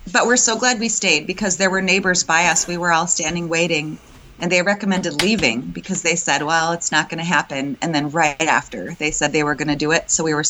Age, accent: 30-49, American